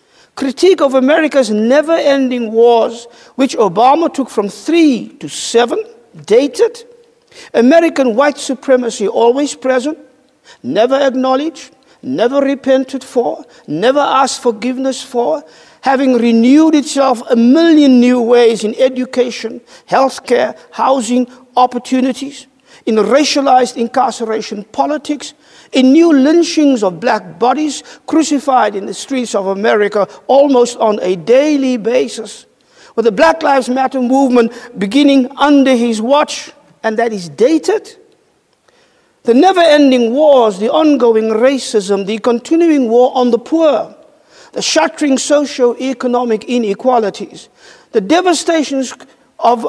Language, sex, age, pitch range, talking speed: English, male, 50-69, 235-290 Hz, 115 wpm